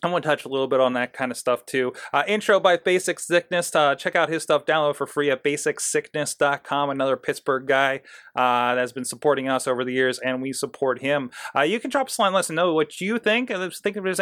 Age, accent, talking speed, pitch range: 30-49, American, 250 wpm, 135-180 Hz